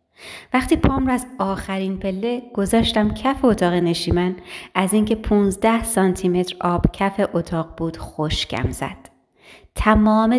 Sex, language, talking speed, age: female, Persian, 125 wpm, 30-49